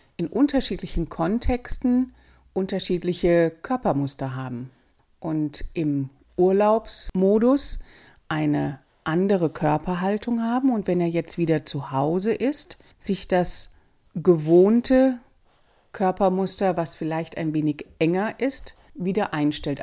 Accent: German